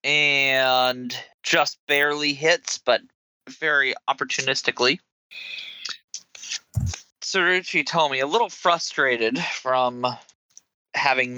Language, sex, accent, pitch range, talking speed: English, male, American, 115-170 Hz, 80 wpm